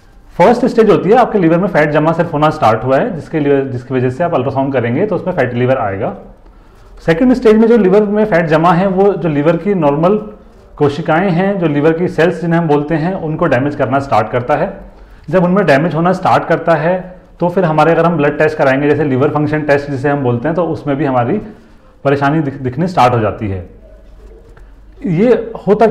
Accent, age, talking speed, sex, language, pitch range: native, 30-49, 215 wpm, male, Hindi, 125-170 Hz